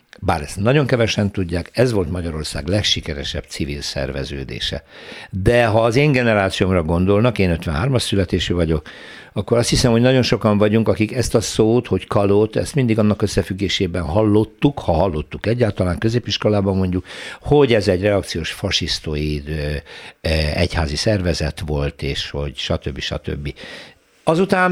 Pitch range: 90-120 Hz